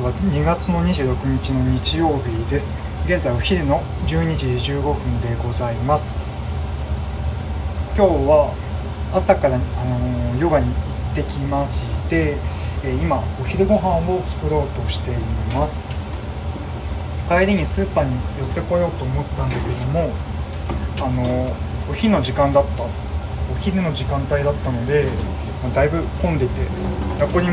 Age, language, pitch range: 20-39, Japanese, 70-90 Hz